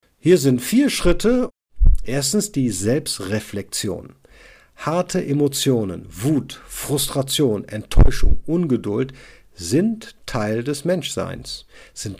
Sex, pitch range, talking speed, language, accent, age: male, 110-150 Hz, 90 wpm, German, German, 50-69